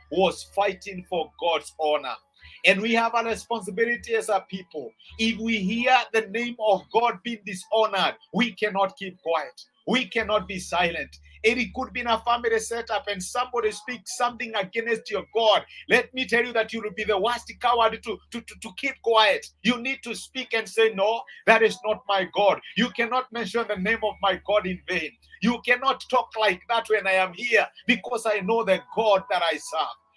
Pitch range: 195-240 Hz